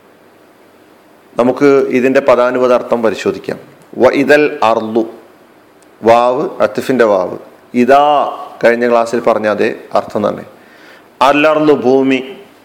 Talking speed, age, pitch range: 90 wpm, 40-59, 130-195 Hz